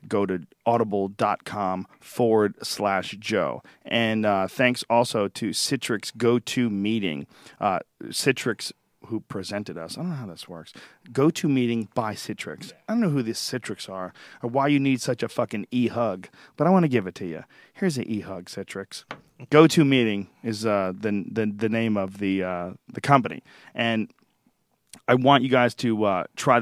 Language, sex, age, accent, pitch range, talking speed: English, male, 40-59, American, 110-130 Hz, 165 wpm